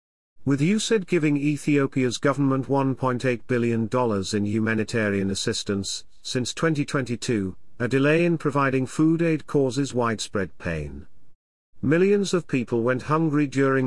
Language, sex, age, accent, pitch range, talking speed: English, male, 50-69, British, 105-145 Hz, 115 wpm